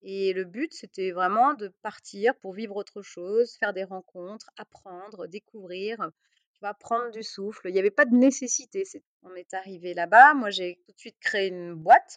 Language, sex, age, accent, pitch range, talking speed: French, female, 30-49, French, 180-220 Hz, 180 wpm